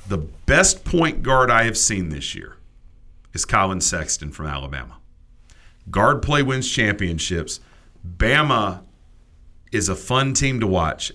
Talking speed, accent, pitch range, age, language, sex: 135 wpm, American, 85-125 Hz, 40-59, English, male